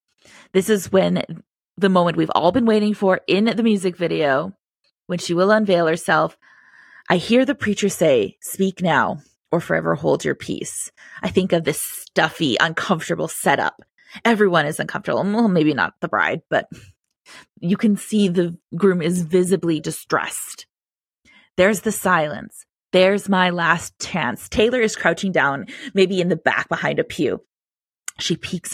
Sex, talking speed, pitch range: female, 155 wpm, 170-210 Hz